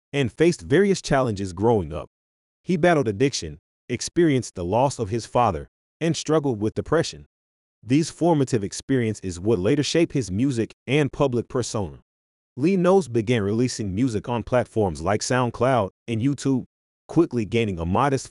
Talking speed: 150 wpm